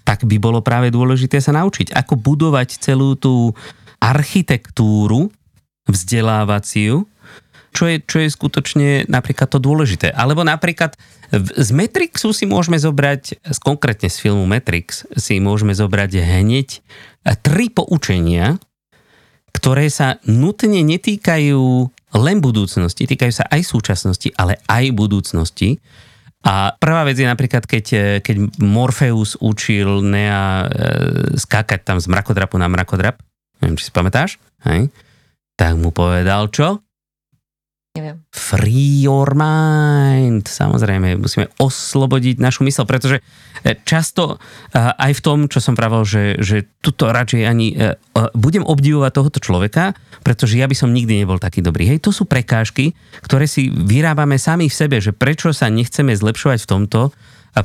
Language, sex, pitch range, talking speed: Slovak, male, 105-140 Hz, 130 wpm